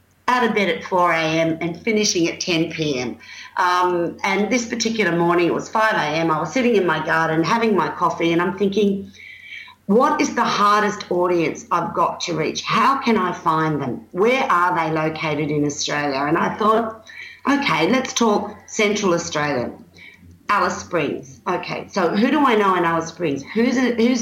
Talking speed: 170 wpm